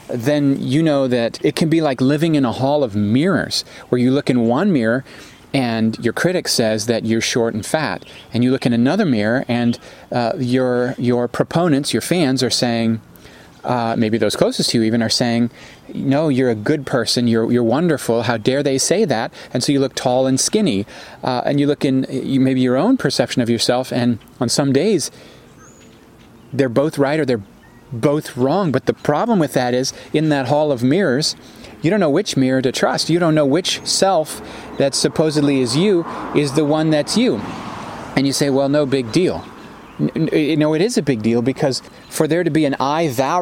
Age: 30-49